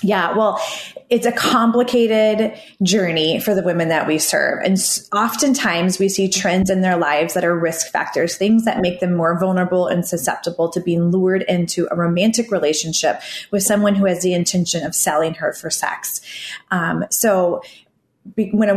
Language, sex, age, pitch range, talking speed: English, female, 20-39, 180-215 Hz, 175 wpm